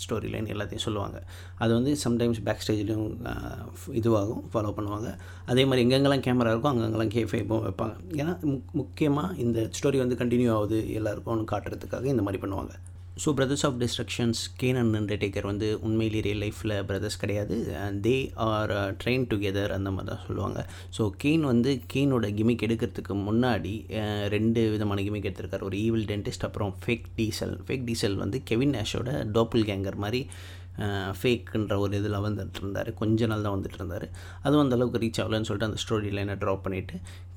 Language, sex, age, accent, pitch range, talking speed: Tamil, male, 30-49, native, 100-115 Hz, 160 wpm